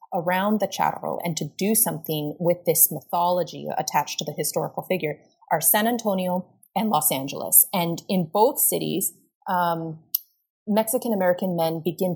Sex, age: female, 30-49